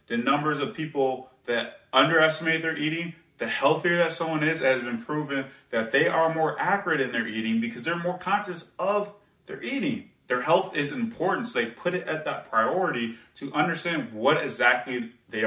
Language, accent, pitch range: English, American, 120-170 Hz